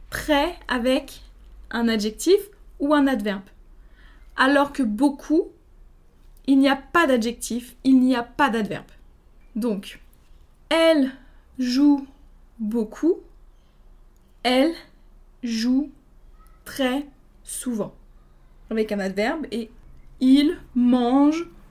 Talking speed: 95 wpm